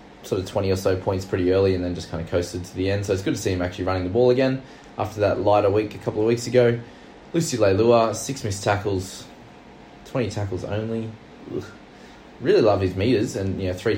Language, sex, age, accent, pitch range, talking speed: English, male, 20-39, Australian, 95-115 Hz, 230 wpm